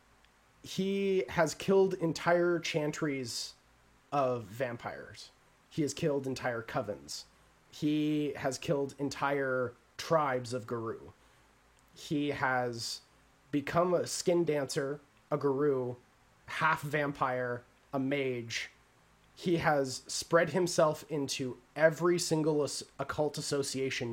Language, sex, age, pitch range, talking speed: English, male, 30-49, 125-150 Hz, 100 wpm